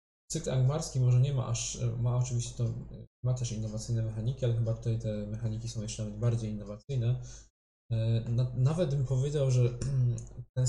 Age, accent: 20-39, native